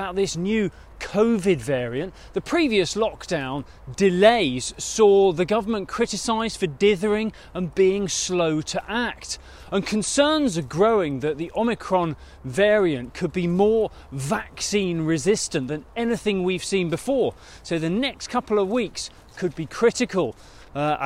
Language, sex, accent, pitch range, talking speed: English, male, British, 155-210 Hz, 135 wpm